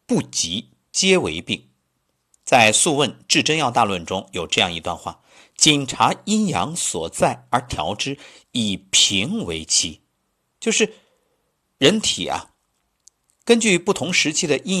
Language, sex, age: Chinese, male, 50-69